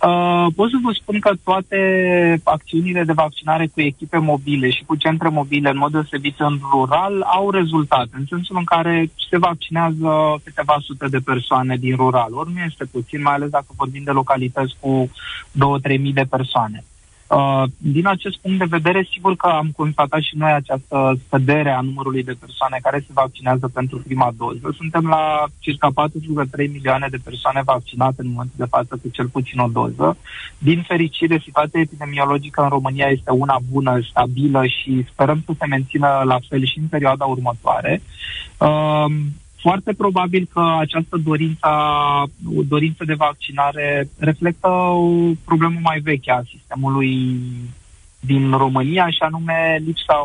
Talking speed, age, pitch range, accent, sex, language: 155 wpm, 20-39, 135-165 Hz, native, male, Romanian